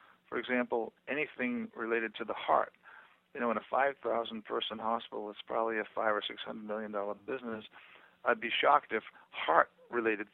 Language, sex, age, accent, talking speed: English, male, 50-69, American, 145 wpm